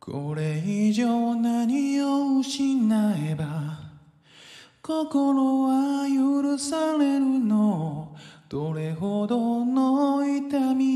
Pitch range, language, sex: 215-270 Hz, Japanese, male